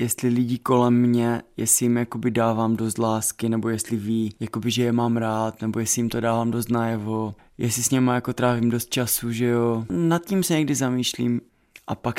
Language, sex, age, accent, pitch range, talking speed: Czech, male, 20-39, native, 115-150 Hz, 200 wpm